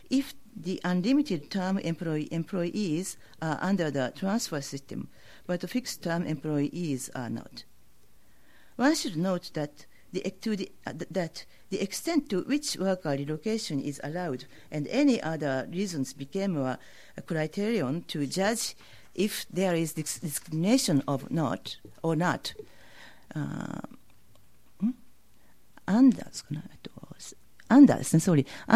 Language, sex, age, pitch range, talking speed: English, female, 40-59, 150-195 Hz, 115 wpm